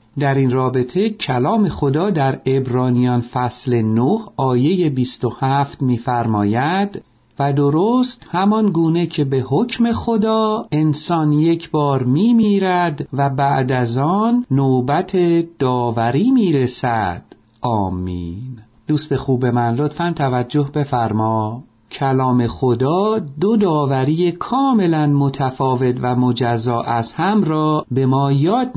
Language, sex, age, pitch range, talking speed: Persian, male, 50-69, 125-180 Hz, 110 wpm